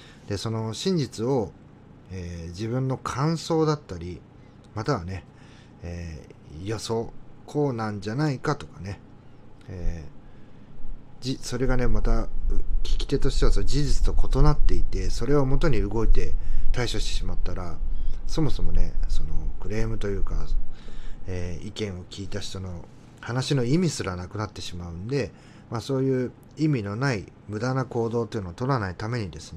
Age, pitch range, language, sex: 40-59, 95-130 Hz, Japanese, male